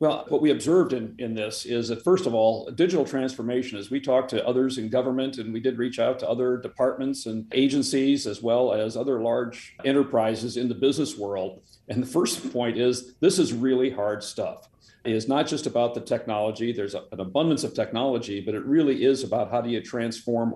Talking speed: 210 wpm